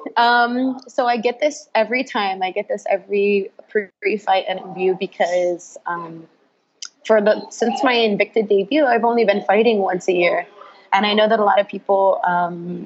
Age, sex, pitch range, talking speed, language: 20-39, female, 175-215 Hz, 180 wpm, English